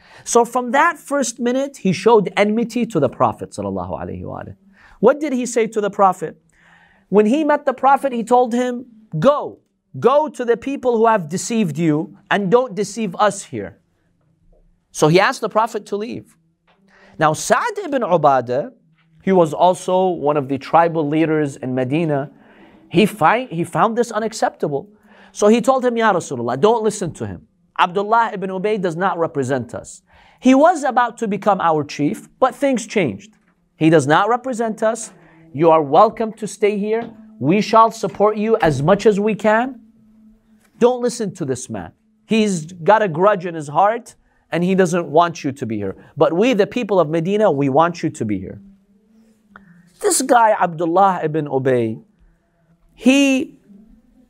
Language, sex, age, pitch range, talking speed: English, male, 40-59, 165-230 Hz, 165 wpm